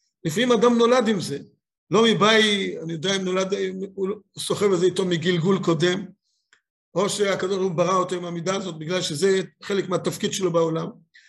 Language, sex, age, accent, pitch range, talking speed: Hebrew, male, 50-69, native, 170-220 Hz, 175 wpm